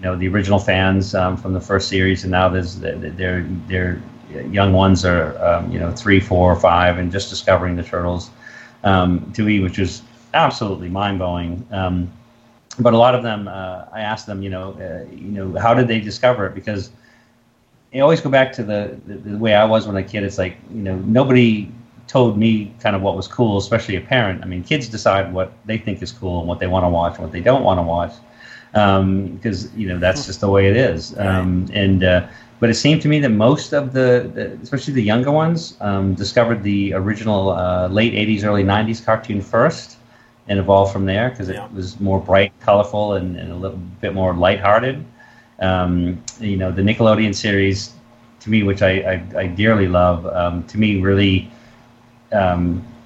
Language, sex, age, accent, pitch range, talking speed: English, male, 30-49, American, 95-115 Hz, 205 wpm